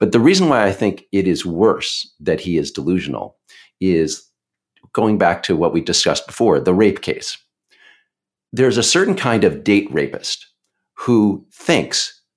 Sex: male